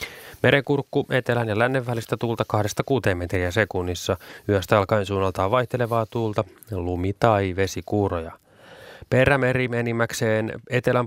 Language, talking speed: Finnish, 110 wpm